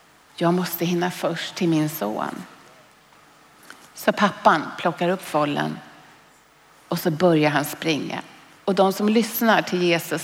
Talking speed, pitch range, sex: 135 wpm, 165-225 Hz, female